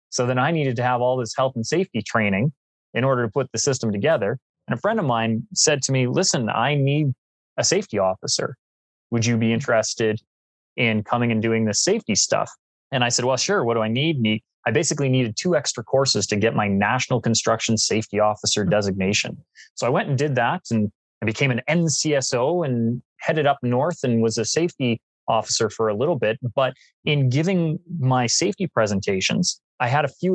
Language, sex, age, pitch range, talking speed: English, male, 20-39, 110-150 Hz, 200 wpm